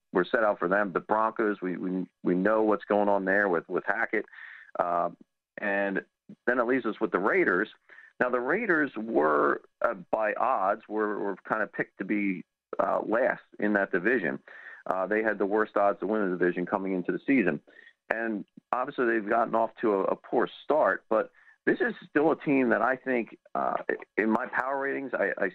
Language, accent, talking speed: English, American, 200 wpm